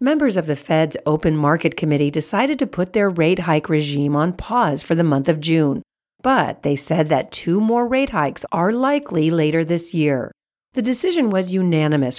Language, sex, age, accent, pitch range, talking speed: English, female, 50-69, American, 150-200 Hz, 185 wpm